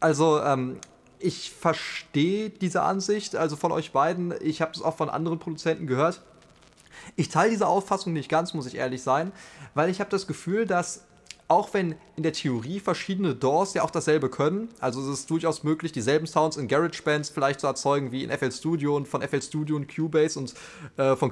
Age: 20-39